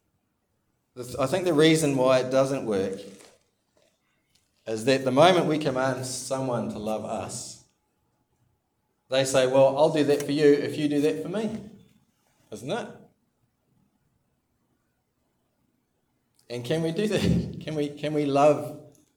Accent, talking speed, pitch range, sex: Australian, 140 wpm, 115-150 Hz, male